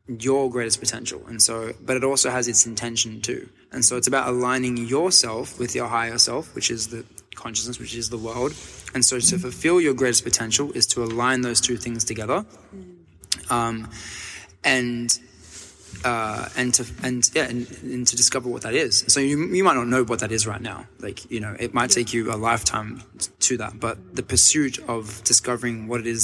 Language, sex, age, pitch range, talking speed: English, male, 20-39, 110-125 Hz, 200 wpm